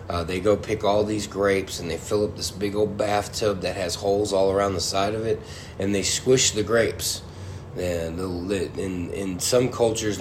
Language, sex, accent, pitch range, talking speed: English, male, American, 90-110 Hz, 205 wpm